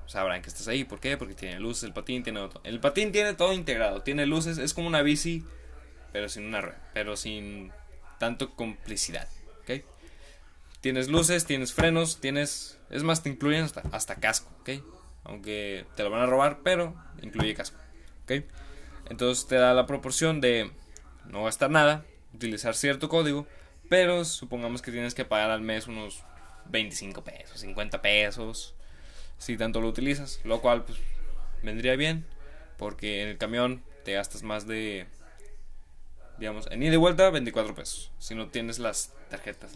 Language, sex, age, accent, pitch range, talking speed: Spanish, male, 20-39, Mexican, 100-135 Hz, 165 wpm